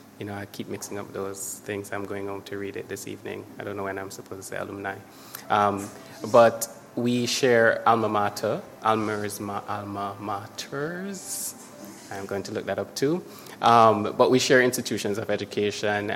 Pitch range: 100-110 Hz